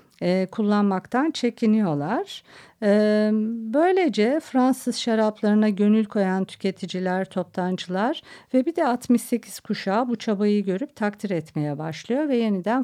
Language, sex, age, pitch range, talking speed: Turkish, female, 50-69, 180-220 Hz, 105 wpm